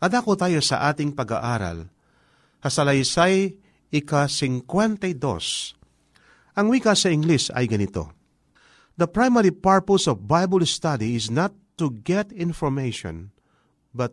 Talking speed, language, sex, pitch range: 105 wpm, Filipino, male, 120-185 Hz